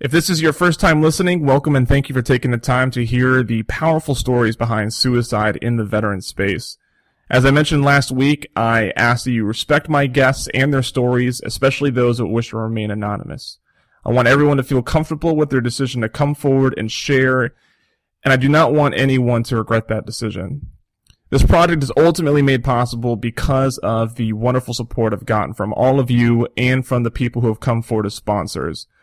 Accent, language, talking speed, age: American, English, 205 wpm, 30-49